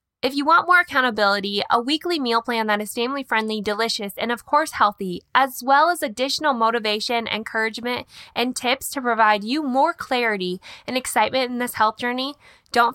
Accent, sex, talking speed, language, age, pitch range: American, female, 170 wpm, English, 10-29, 215-280 Hz